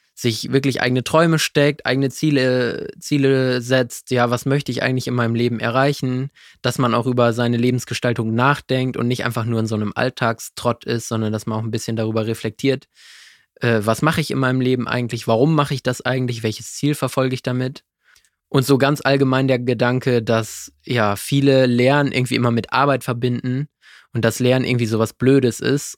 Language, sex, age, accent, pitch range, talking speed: German, male, 20-39, German, 115-135 Hz, 190 wpm